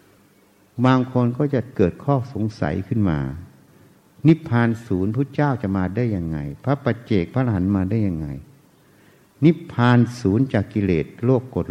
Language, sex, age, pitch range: Thai, male, 60-79, 100-130 Hz